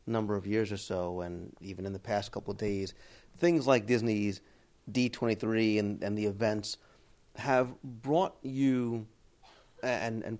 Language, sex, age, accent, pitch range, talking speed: English, male, 30-49, American, 105-130 Hz, 150 wpm